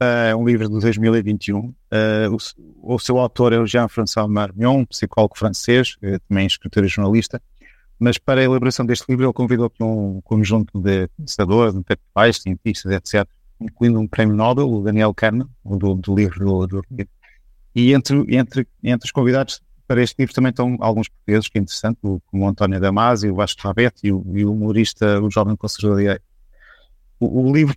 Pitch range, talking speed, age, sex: 100-125 Hz, 175 wpm, 50-69, male